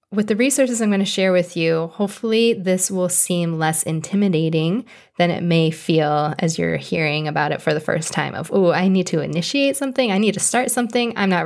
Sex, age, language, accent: female, 20-39, English, American